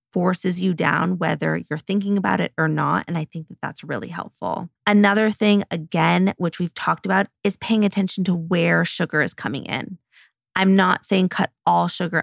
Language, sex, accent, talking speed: English, female, American, 190 wpm